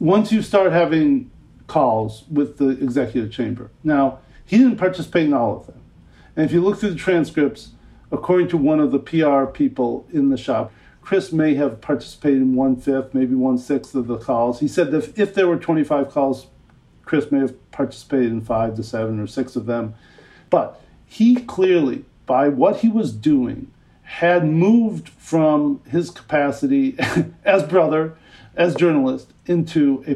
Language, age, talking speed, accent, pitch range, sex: English, 50-69, 170 wpm, American, 130-175 Hz, male